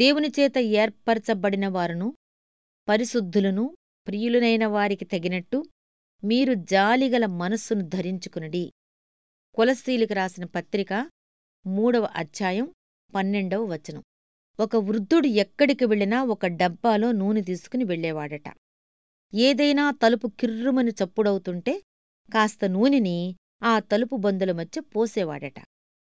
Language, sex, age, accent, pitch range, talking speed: Telugu, female, 30-49, native, 185-250 Hz, 85 wpm